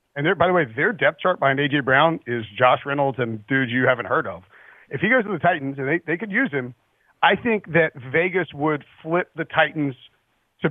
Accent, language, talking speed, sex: American, English, 225 wpm, male